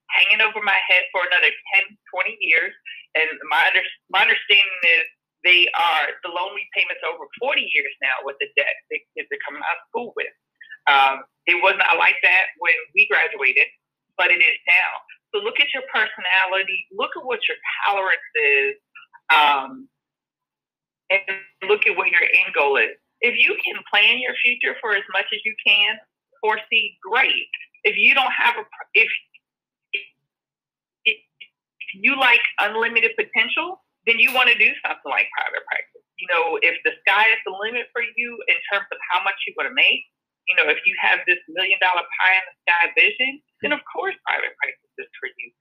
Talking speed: 185 wpm